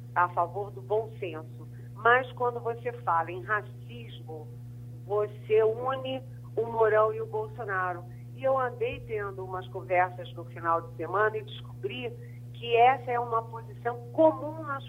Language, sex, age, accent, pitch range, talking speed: Portuguese, female, 50-69, Brazilian, 120-180 Hz, 150 wpm